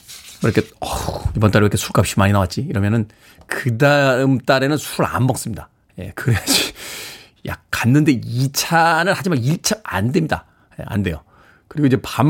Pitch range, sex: 115-185 Hz, male